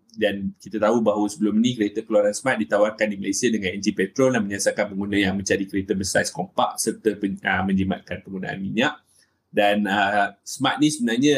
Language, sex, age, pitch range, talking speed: Malay, male, 20-39, 100-115 Hz, 180 wpm